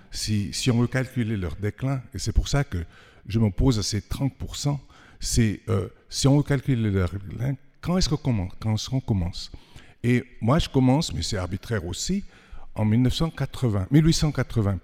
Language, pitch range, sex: French, 95-125 Hz, male